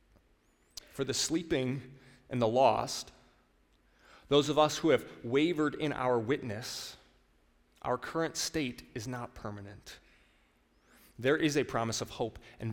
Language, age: English, 30-49